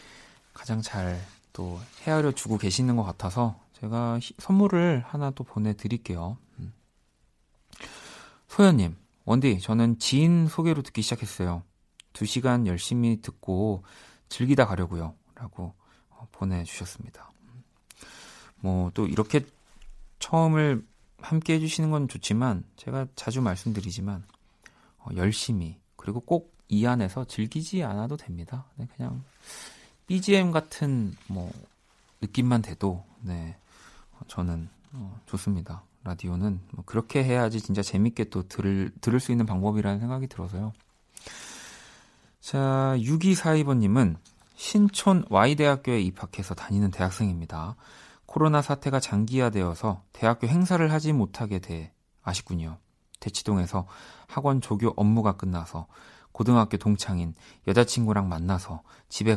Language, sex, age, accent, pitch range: Korean, male, 40-59, native, 95-130 Hz